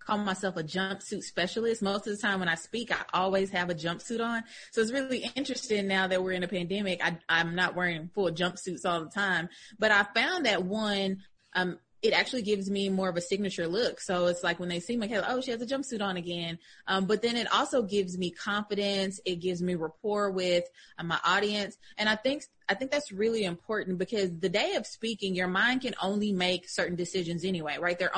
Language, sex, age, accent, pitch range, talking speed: English, female, 20-39, American, 175-215 Hz, 220 wpm